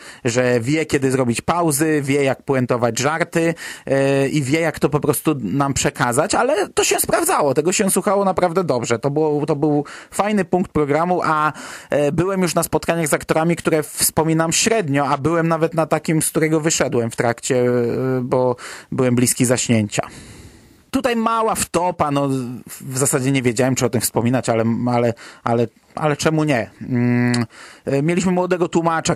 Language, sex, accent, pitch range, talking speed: Polish, male, native, 130-155 Hz, 160 wpm